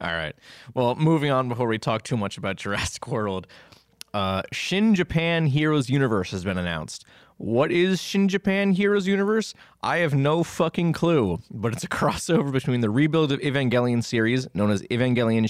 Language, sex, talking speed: English, male, 175 wpm